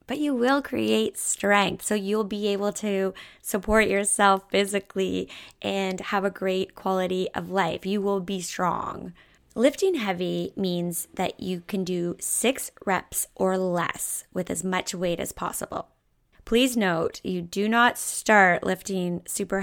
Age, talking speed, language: 20-39, 150 wpm, English